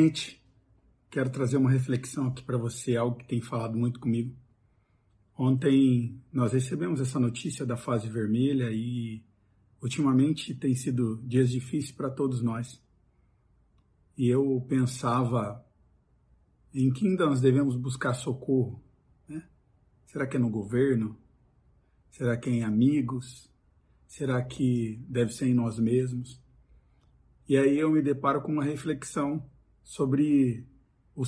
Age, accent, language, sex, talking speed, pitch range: 50-69, Brazilian, Portuguese, male, 130 wpm, 120-140 Hz